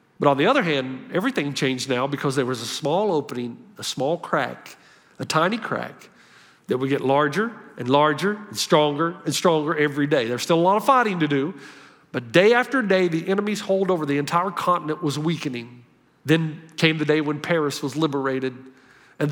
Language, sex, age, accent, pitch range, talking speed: English, male, 50-69, American, 150-205 Hz, 195 wpm